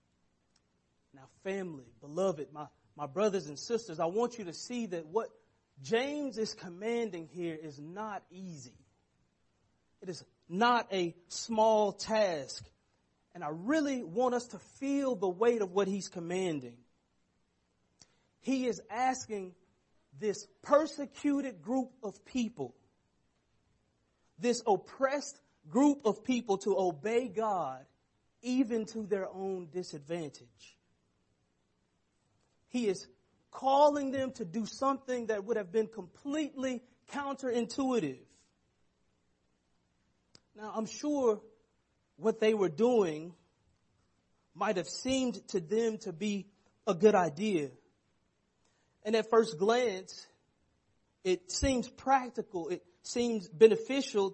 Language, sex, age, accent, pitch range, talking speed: English, male, 40-59, American, 160-235 Hz, 115 wpm